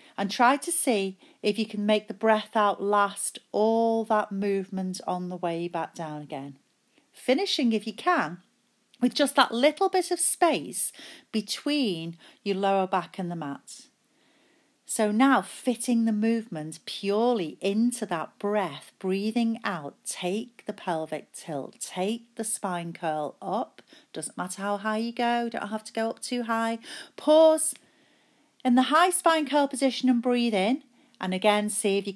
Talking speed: 165 wpm